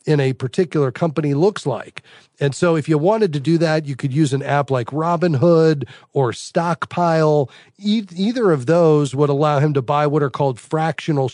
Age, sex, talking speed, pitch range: 40-59, male, 185 wpm, 140-165 Hz